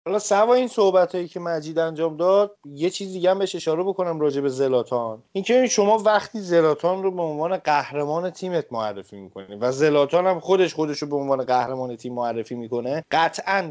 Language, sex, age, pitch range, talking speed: Persian, male, 30-49, 150-195 Hz, 190 wpm